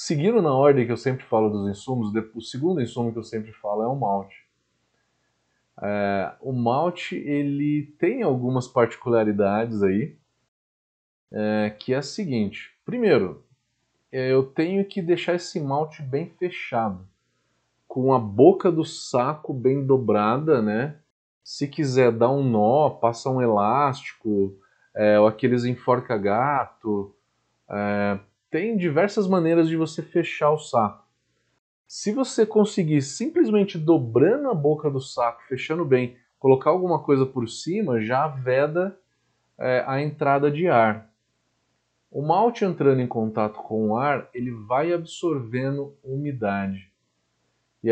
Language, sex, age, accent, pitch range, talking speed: Portuguese, male, 20-39, Brazilian, 110-150 Hz, 130 wpm